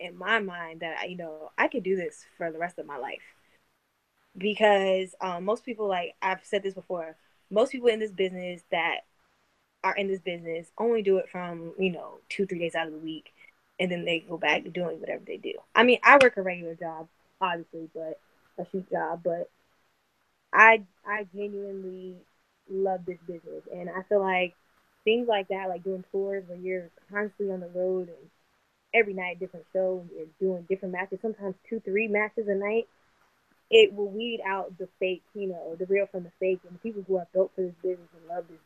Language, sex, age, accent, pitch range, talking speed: English, female, 10-29, American, 180-215 Hz, 205 wpm